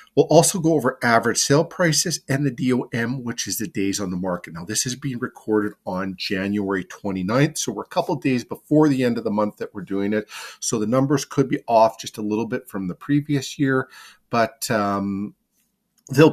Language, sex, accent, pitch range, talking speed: English, male, American, 105-140 Hz, 215 wpm